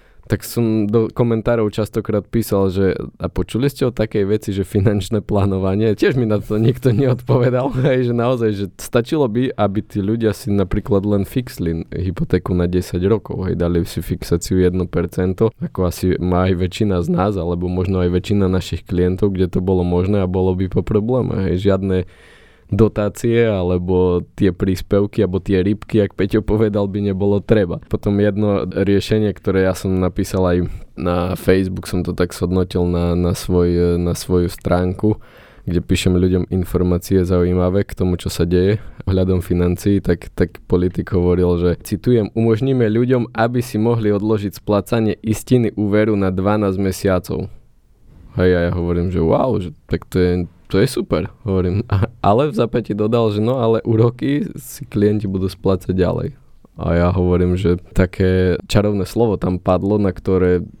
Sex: male